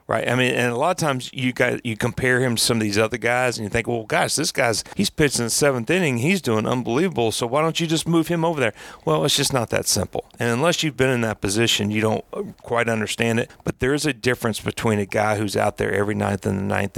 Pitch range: 105-125 Hz